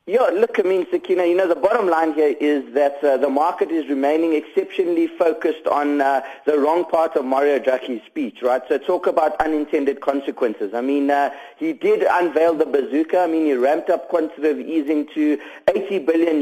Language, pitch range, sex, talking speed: English, 150-180 Hz, male, 195 wpm